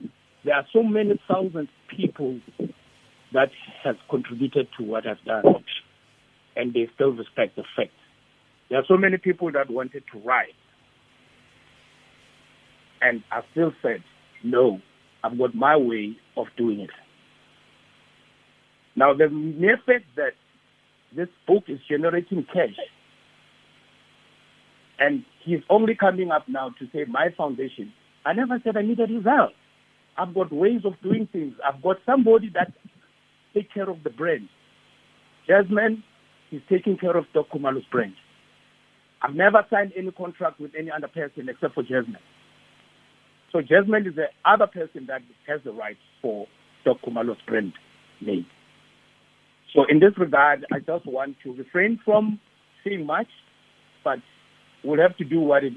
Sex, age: male, 60-79